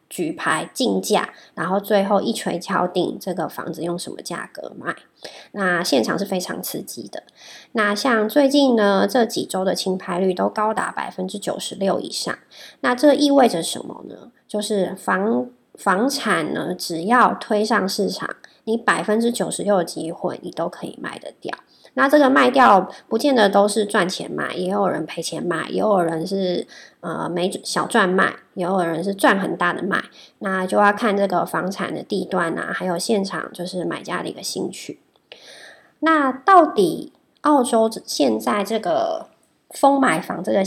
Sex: male